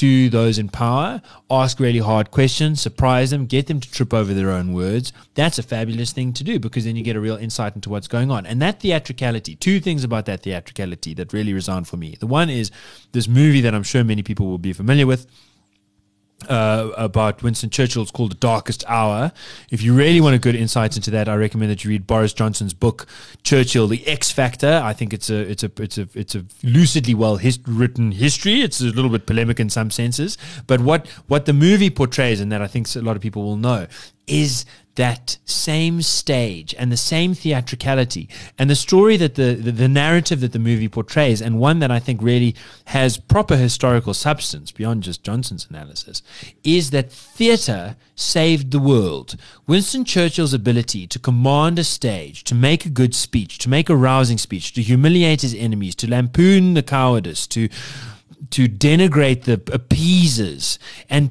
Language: English